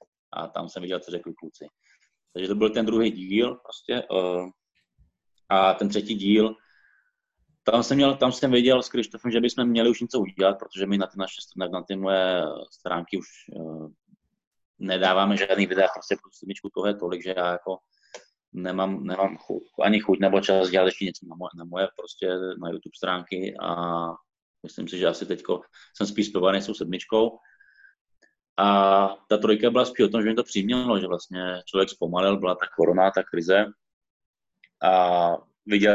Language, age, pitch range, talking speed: Slovak, 20-39, 90-100 Hz, 175 wpm